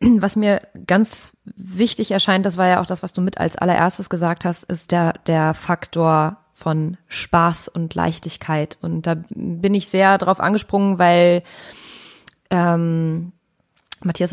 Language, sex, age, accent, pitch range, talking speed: German, female, 20-39, German, 175-205 Hz, 145 wpm